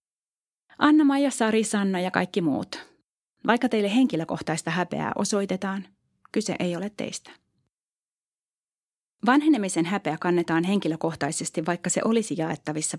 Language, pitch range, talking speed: Finnish, 170-220 Hz, 105 wpm